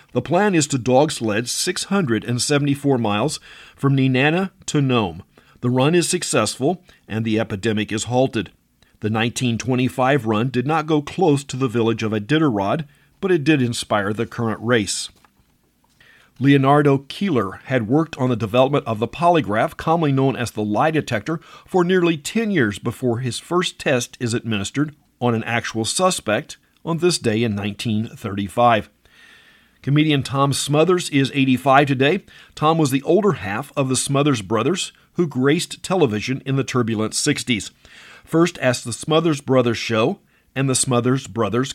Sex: male